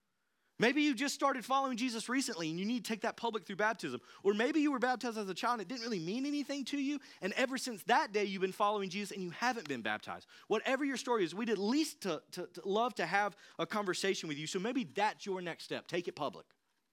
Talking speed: 245 wpm